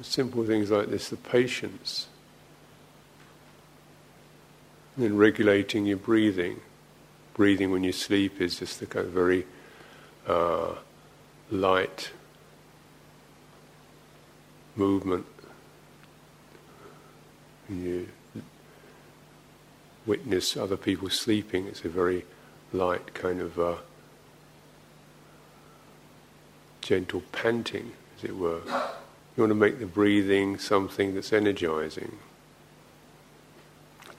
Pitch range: 90-105 Hz